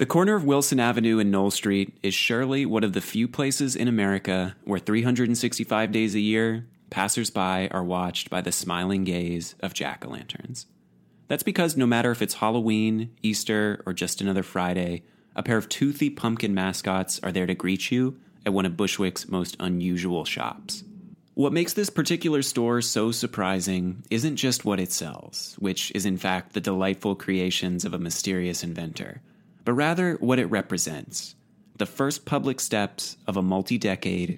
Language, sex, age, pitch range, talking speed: English, male, 30-49, 95-120 Hz, 170 wpm